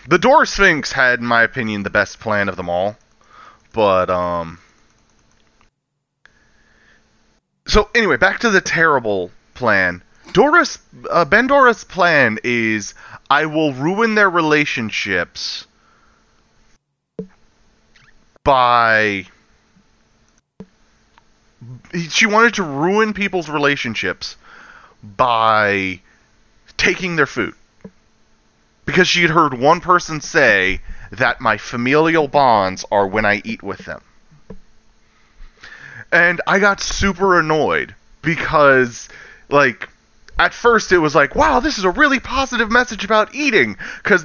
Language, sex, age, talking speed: English, male, 30-49, 110 wpm